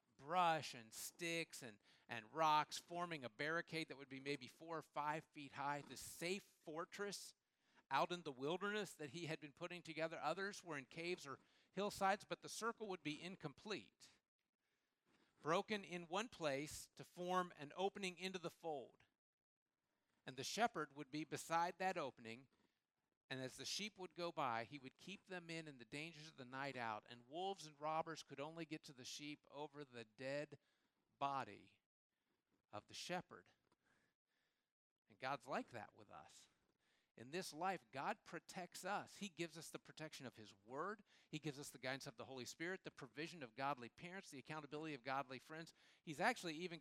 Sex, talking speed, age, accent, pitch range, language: male, 180 wpm, 50-69, American, 135-175 Hz, English